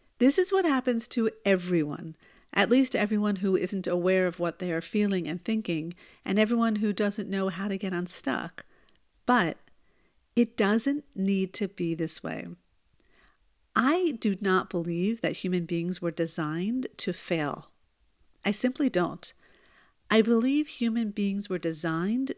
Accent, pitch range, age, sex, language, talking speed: American, 175-220 Hz, 50-69, female, English, 150 wpm